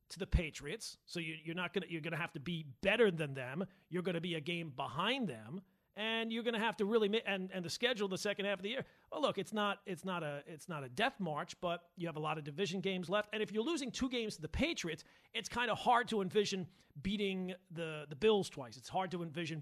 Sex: male